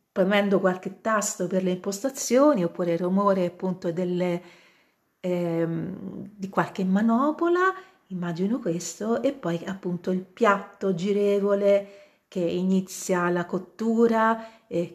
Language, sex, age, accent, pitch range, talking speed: Italian, female, 40-59, native, 175-210 Hz, 110 wpm